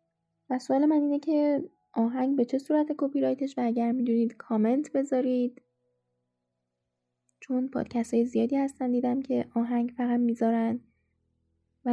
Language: Persian